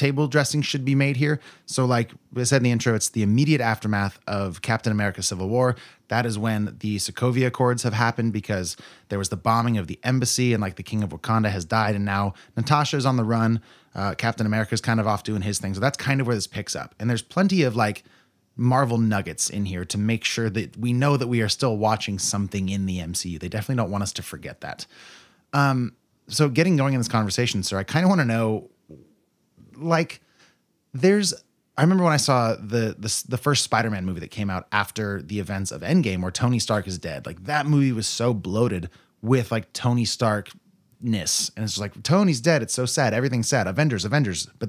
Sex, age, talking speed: male, 30-49, 225 wpm